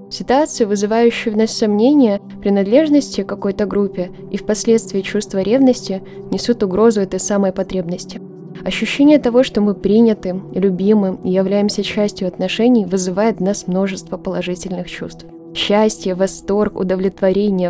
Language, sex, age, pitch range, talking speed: Ukrainian, female, 20-39, 190-220 Hz, 125 wpm